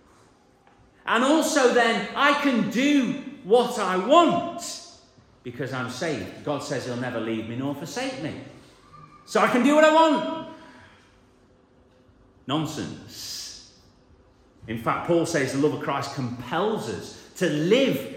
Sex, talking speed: male, 135 wpm